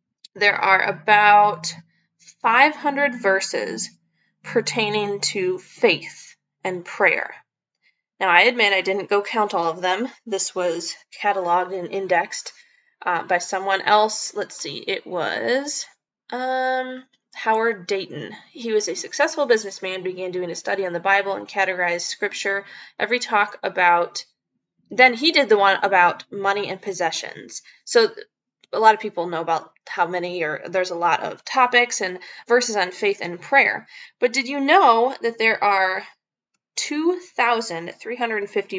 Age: 10-29